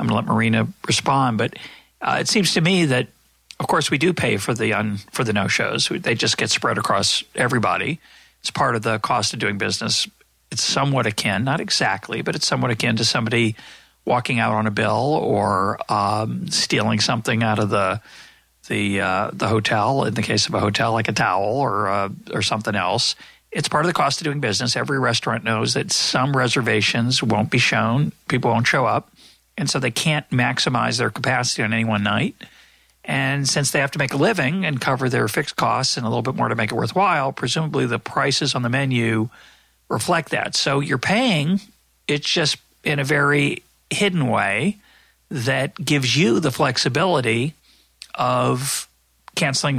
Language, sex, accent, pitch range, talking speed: English, male, American, 110-140 Hz, 190 wpm